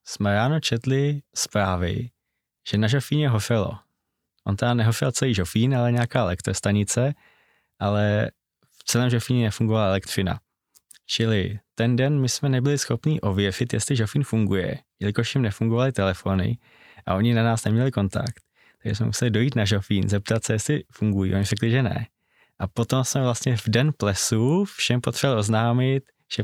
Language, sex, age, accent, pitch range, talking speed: Czech, male, 20-39, native, 100-120 Hz, 155 wpm